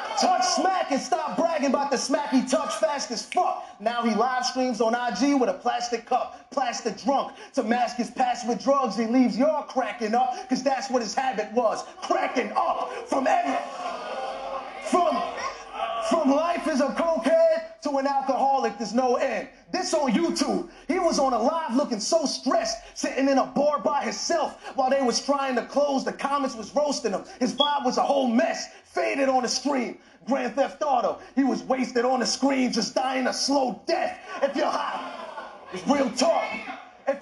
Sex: male